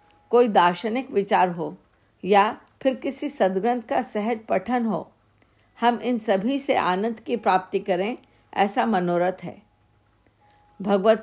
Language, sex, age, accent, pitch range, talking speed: Hindi, female, 50-69, native, 180-220 Hz, 130 wpm